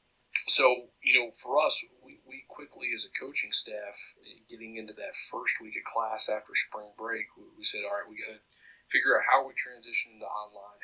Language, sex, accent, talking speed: English, male, American, 205 wpm